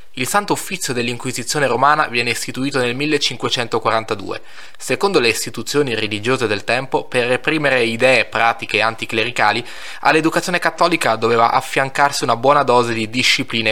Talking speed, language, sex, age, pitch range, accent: 125 wpm, Italian, male, 20-39, 115-140 Hz, native